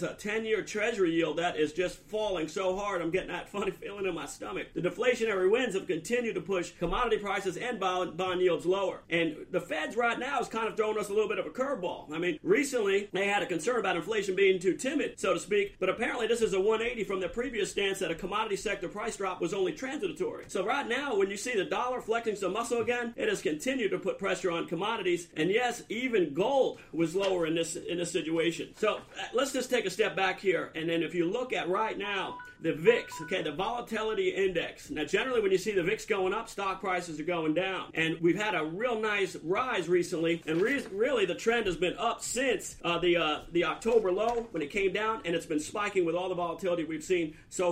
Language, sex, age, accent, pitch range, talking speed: English, male, 40-59, American, 175-250 Hz, 235 wpm